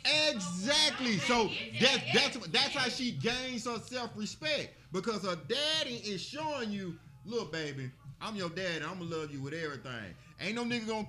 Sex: male